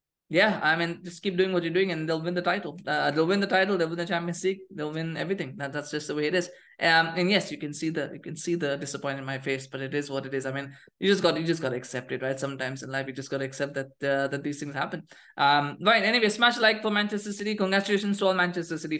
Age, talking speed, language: 20-39, 295 wpm, English